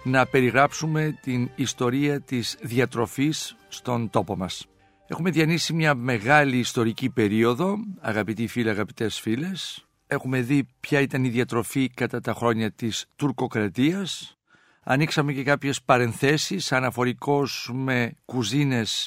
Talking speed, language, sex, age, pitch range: 115 wpm, Greek, male, 60-79, 125-160 Hz